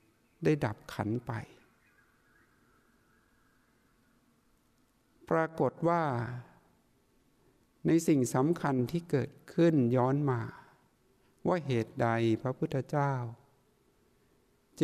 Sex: male